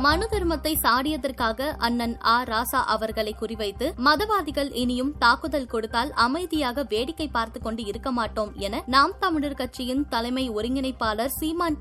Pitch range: 230-310 Hz